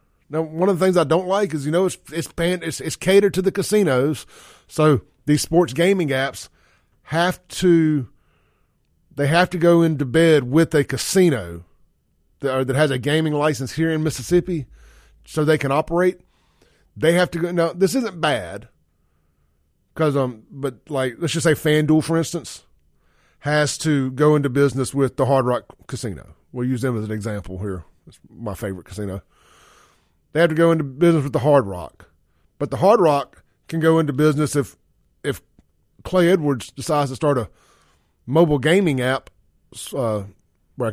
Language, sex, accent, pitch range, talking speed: English, male, American, 110-160 Hz, 175 wpm